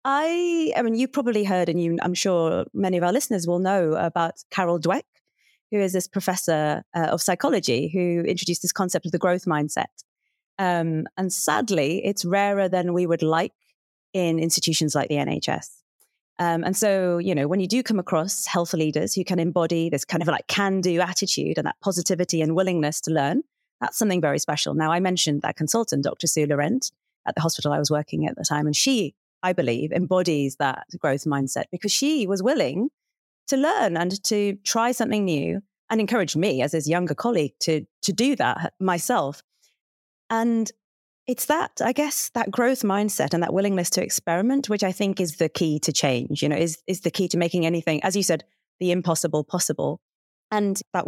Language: English